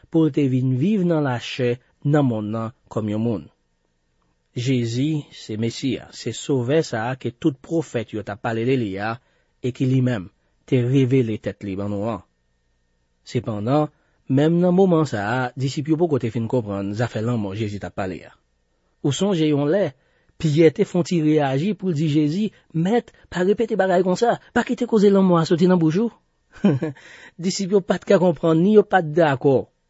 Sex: male